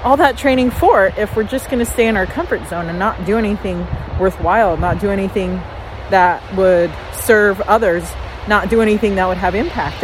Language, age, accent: English, 30-49, American